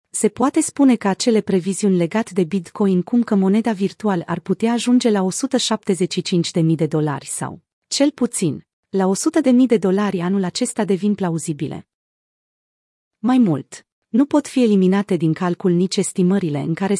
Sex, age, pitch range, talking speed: female, 30-49, 180-225 Hz, 160 wpm